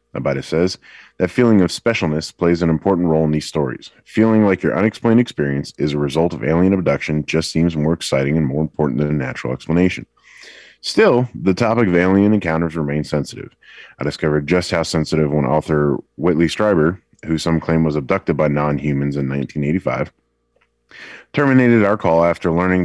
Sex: male